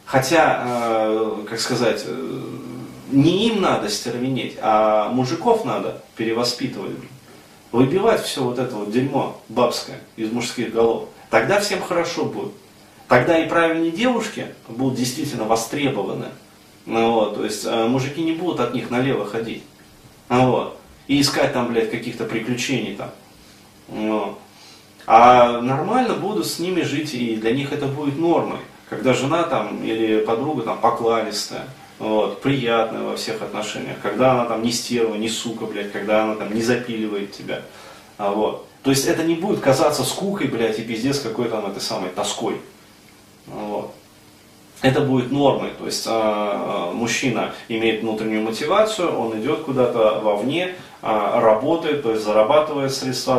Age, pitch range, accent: 30-49, 110-140 Hz, native